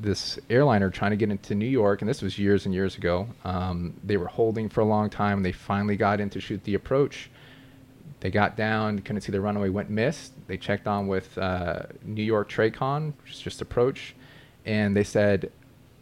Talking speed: 215 wpm